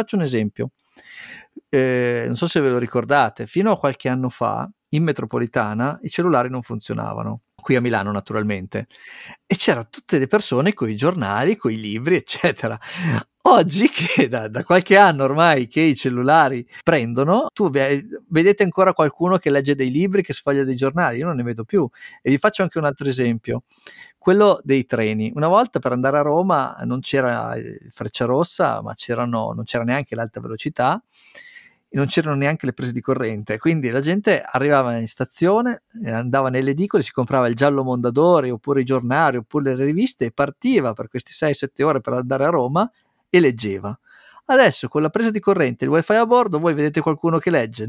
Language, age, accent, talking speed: Italian, 50-69, native, 185 wpm